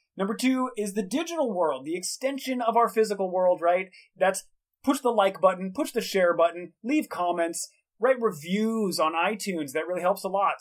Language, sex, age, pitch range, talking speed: English, male, 30-49, 165-220 Hz, 185 wpm